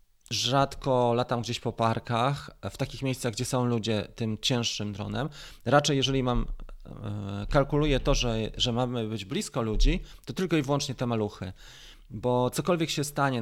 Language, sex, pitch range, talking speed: Polish, male, 105-130 Hz, 155 wpm